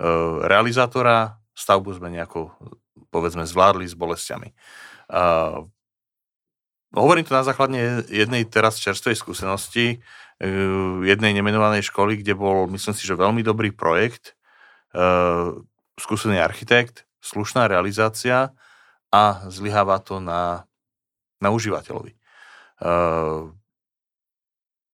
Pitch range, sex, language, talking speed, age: 95-120 Hz, male, English, 100 wpm, 40-59